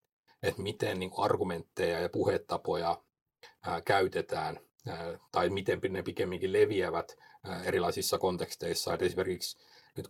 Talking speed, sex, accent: 90 wpm, male, native